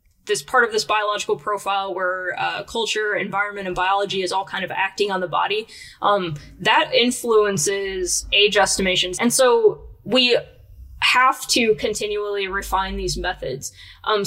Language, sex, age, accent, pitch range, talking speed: English, female, 10-29, American, 190-220 Hz, 145 wpm